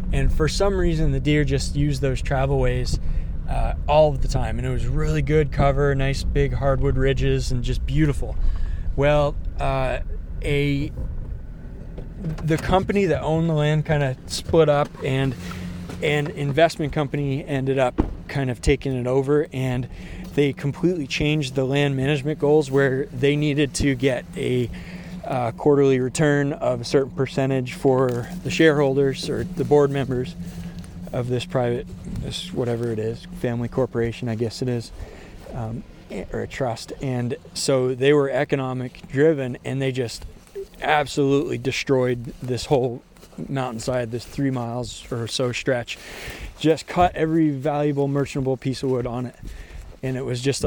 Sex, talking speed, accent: male, 155 wpm, American